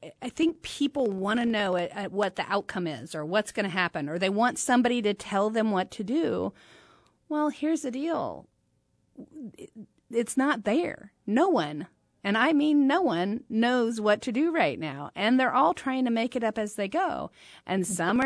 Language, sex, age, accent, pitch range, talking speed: English, female, 40-59, American, 205-265 Hz, 195 wpm